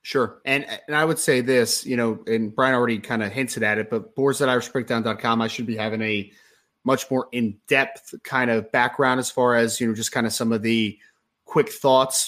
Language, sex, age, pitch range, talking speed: English, male, 20-39, 120-145 Hz, 225 wpm